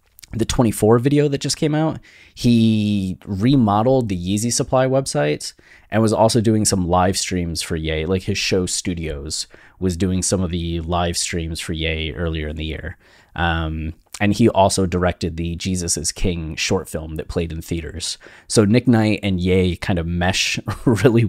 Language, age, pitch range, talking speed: English, 20-39, 90-110 Hz, 180 wpm